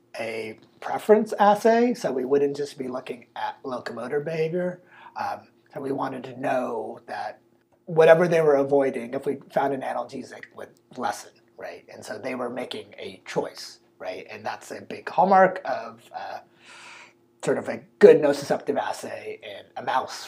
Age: 30-49